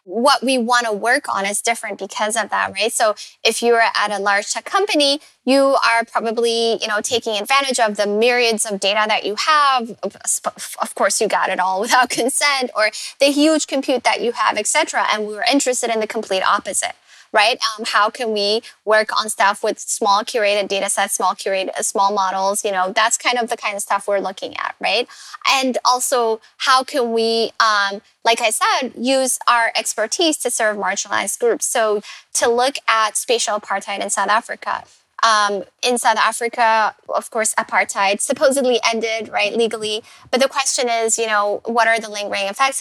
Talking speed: 190 wpm